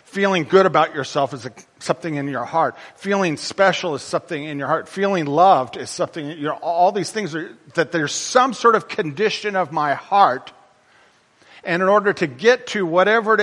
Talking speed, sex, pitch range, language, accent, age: 190 wpm, male, 140-190 Hz, English, American, 40-59